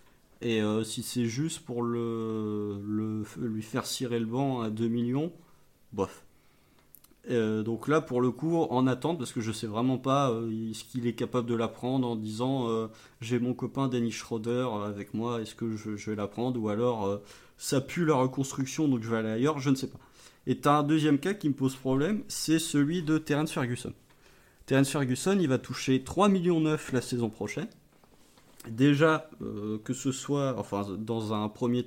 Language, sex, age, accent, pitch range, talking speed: French, male, 30-49, French, 110-140 Hz, 200 wpm